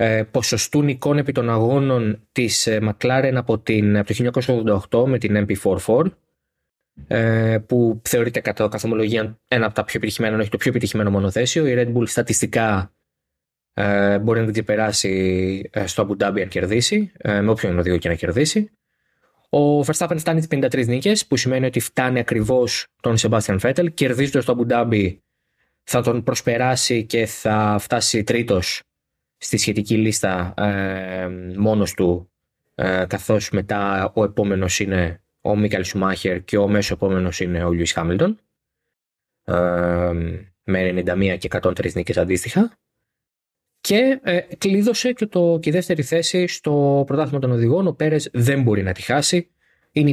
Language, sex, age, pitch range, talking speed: Greek, male, 20-39, 100-130 Hz, 145 wpm